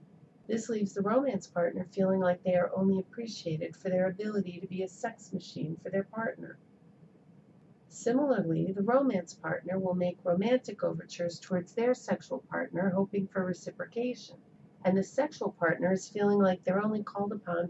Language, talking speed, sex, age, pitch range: English, 165 wpm, female, 40-59, 180-210 Hz